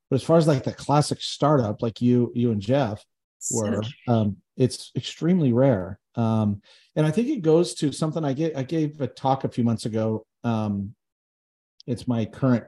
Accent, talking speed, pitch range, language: American, 190 wpm, 105-130 Hz, English